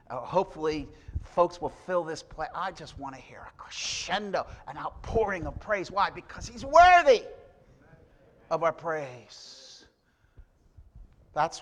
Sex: male